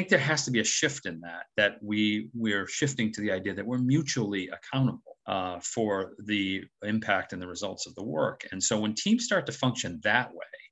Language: English